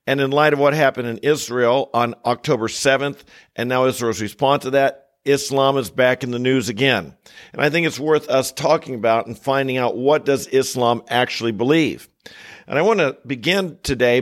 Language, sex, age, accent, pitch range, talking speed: English, male, 50-69, American, 125-155 Hz, 195 wpm